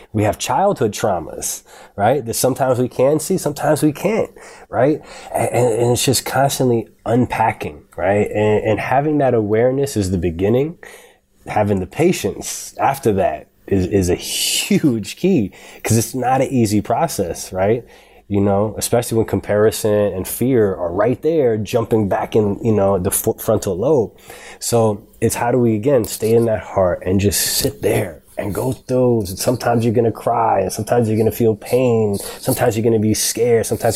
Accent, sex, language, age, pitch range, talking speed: American, male, English, 20-39, 105-130 Hz, 175 wpm